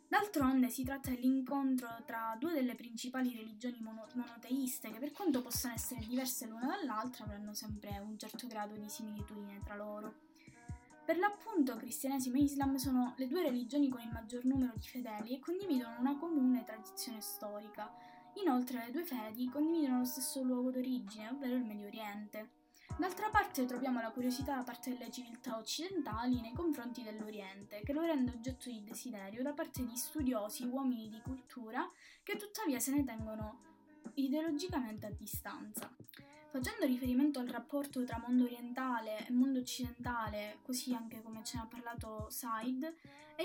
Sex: female